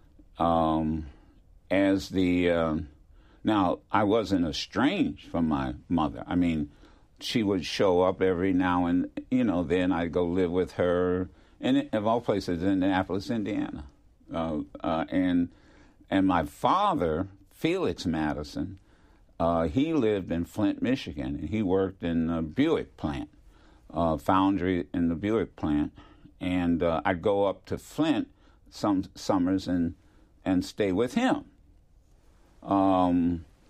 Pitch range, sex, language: 80-95 Hz, male, English